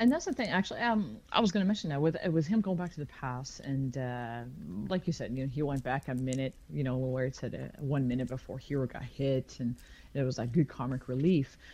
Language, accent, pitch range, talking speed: English, American, 130-190 Hz, 265 wpm